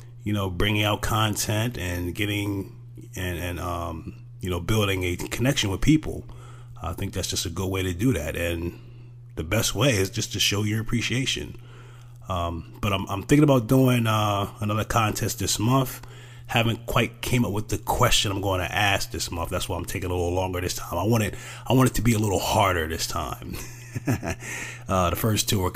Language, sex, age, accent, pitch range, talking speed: English, male, 30-49, American, 95-120 Hz, 205 wpm